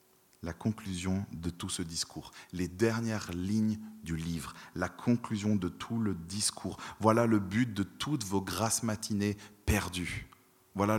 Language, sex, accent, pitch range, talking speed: French, male, French, 90-115 Hz, 145 wpm